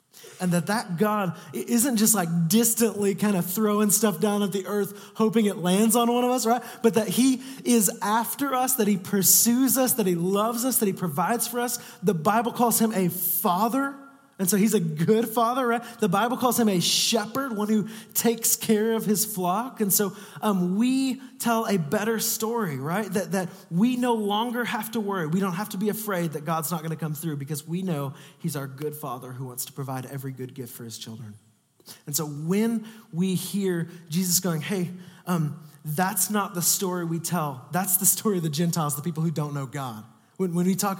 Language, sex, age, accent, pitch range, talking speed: English, male, 20-39, American, 150-210 Hz, 215 wpm